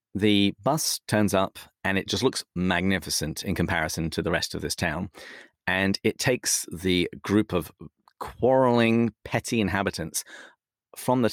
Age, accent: 30-49, British